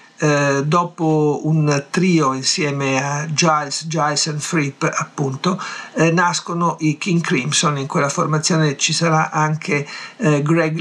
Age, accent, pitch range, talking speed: 50-69, native, 145-170 Hz, 135 wpm